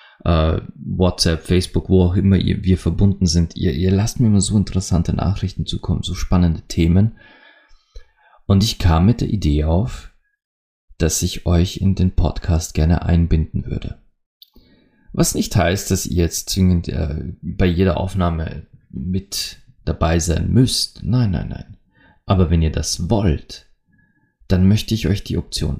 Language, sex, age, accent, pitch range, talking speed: German, male, 30-49, German, 85-100 Hz, 150 wpm